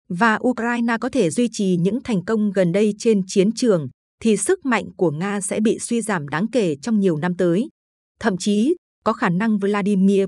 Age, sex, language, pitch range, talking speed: 20-39, female, Vietnamese, 185-230 Hz, 205 wpm